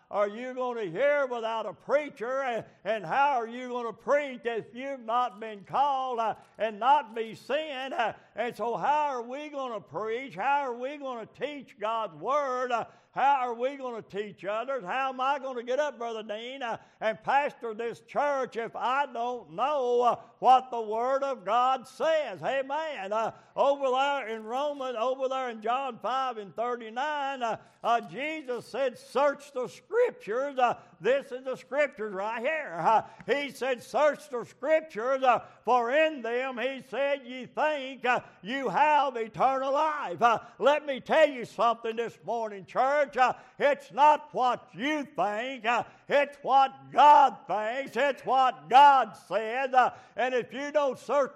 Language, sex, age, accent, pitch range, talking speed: English, male, 60-79, American, 230-280 Hz, 175 wpm